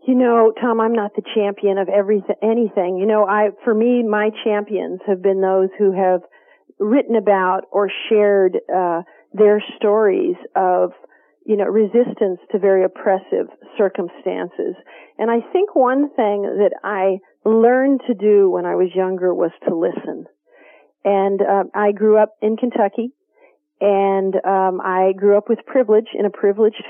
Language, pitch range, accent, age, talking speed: English, 190-230 Hz, American, 40-59, 160 wpm